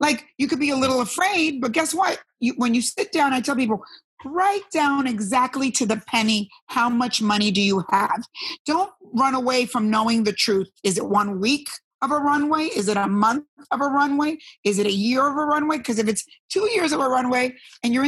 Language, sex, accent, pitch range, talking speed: English, female, American, 230-295 Hz, 220 wpm